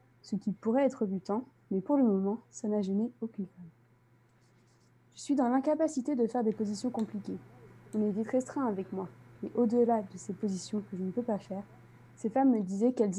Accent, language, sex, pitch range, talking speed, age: French, French, female, 185-230 Hz, 205 wpm, 20-39